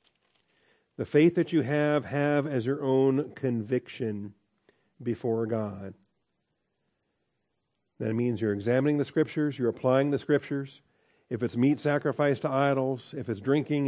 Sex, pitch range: male, 115-145 Hz